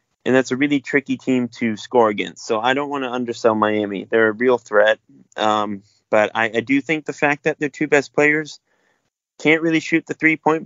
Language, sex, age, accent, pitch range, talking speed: English, male, 20-39, American, 110-140 Hz, 220 wpm